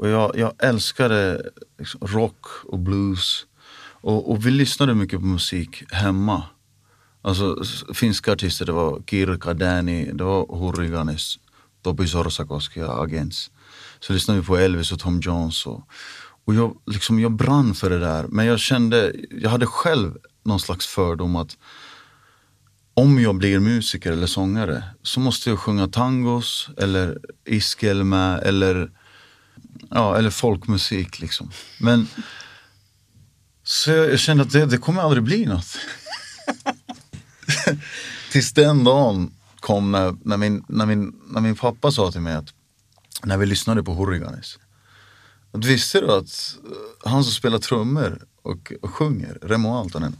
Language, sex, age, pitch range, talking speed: Finnish, male, 30-49, 95-120 Hz, 140 wpm